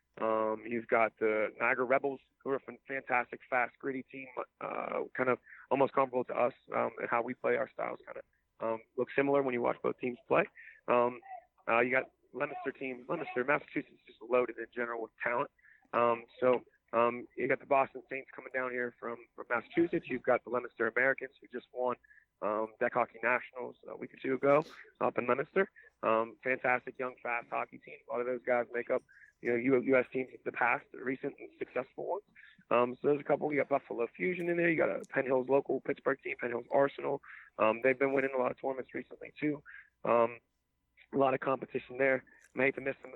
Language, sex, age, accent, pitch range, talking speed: English, male, 30-49, American, 120-140 Hz, 215 wpm